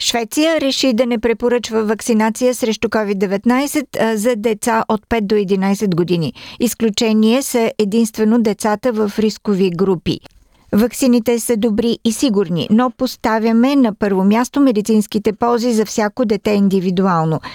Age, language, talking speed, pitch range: 50-69, Bulgarian, 130 wpm, 200-240 Hz